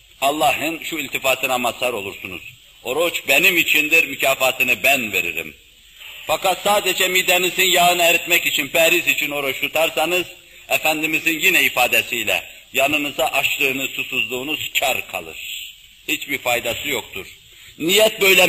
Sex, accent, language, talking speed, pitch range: male, native, Turkish, 110 wpm, 145-185 Hz